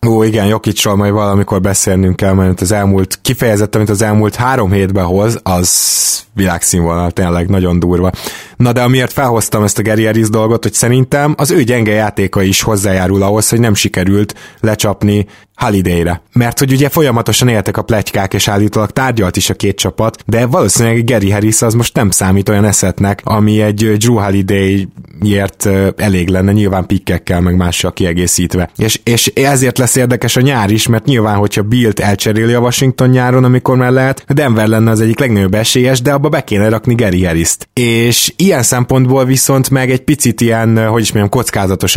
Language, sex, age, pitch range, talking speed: Hungarian, male, 20-39, 100-120 Hz, 175 wpm